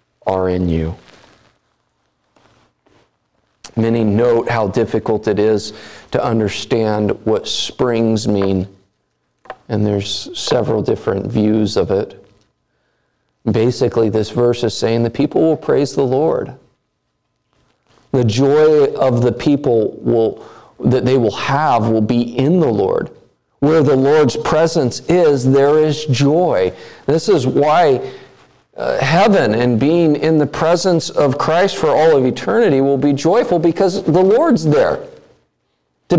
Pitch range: 110-175 Hz